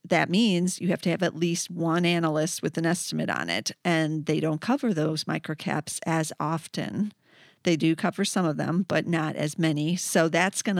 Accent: American